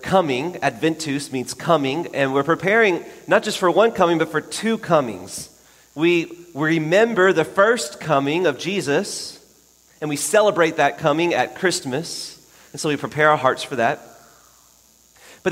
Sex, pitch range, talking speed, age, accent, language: male, 120-160 Hz, 150 wpm, 30-49, American, English